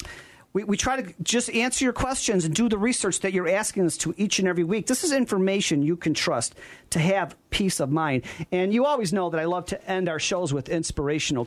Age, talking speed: 40-59, 235 wpm